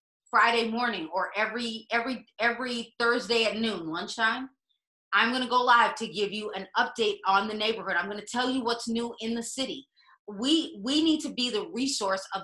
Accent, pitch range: American, 205-260 Hz